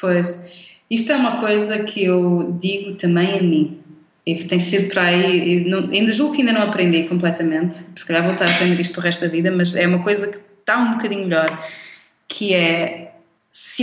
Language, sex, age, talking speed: Portuguese, female, 20-39, 210 wpm